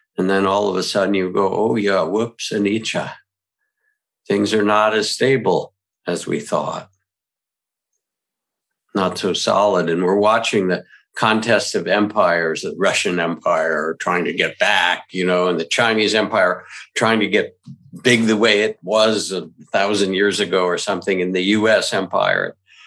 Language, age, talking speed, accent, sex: English, 60-79, 160 wpm, American, male